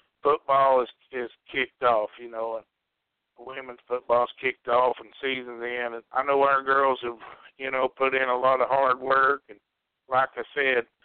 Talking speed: 185 wpm